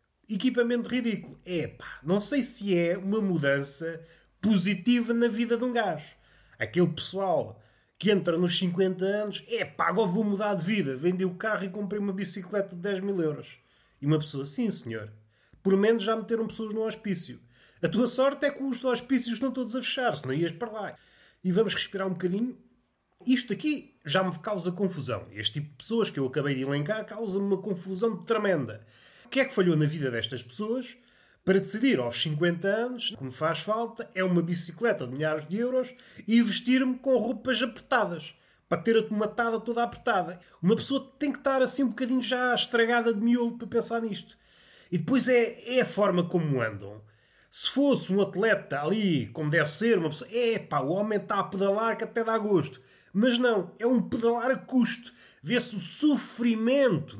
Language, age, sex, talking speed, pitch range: Portuguese, 30-49, male, 185 wpm, 170-235 Hz